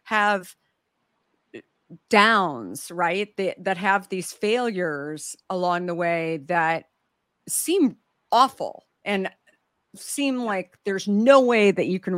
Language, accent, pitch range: English, American, 170-205 Hz